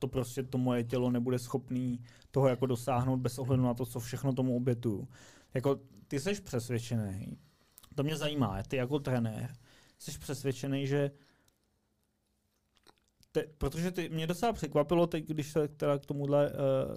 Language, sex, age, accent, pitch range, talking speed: Czech, male, 20-39, native, 125-145 Hz, 150 wpm